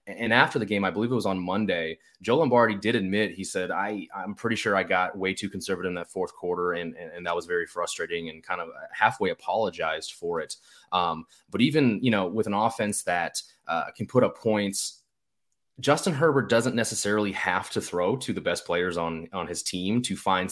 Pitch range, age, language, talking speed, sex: 95-110 Hz, 20-39, English, 215 wpm, male